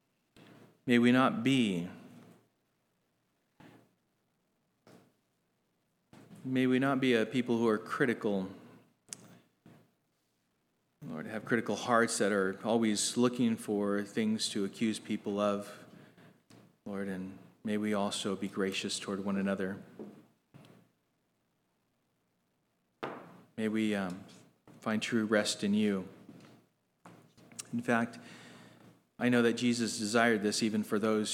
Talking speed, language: 105 wpm, English